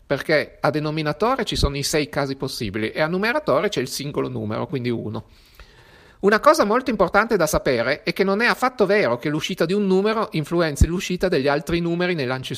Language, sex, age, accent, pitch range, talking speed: Italian, male, 40-59, native, 150-195 Hz, 200 wpm